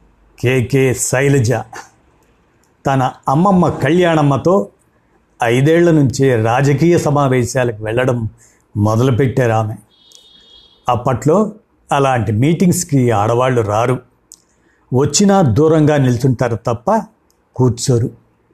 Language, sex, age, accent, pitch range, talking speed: Telugu, male, 50-69, native, 120-160 Hz, 70 wpm